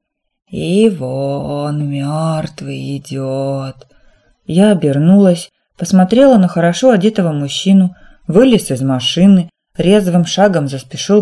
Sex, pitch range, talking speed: female, 150-210 Hz, 90 wpm